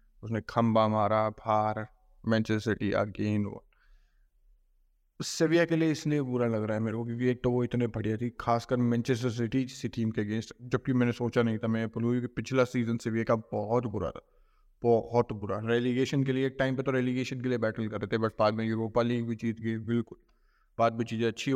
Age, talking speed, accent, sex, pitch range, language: 20-39, 210 wpm, native, male, 115-125 Hz, Hindi